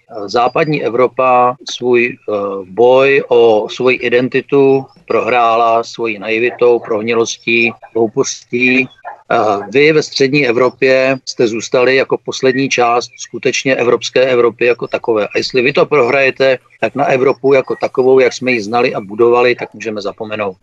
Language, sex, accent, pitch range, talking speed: Czech, male, native, 120-145 Hz, 135 wpm